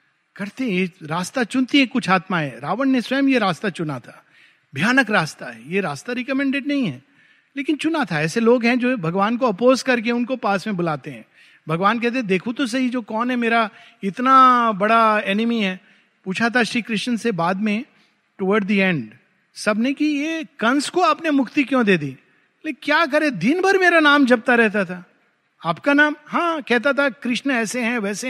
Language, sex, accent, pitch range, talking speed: Hindi, male, native, 200-265 Hz, 190 wpm